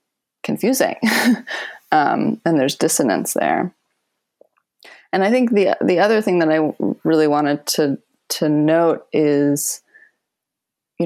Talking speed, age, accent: 120 wpm, 20-39, American